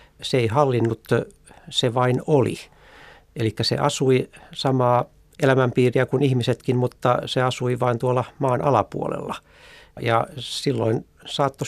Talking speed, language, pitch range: 120 wpm, Finnish, 110-130 Hz